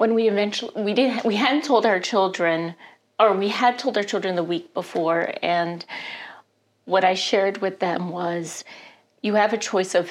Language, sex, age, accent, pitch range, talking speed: English, female, 40-59, American, 155-195 Hz, 185 wpm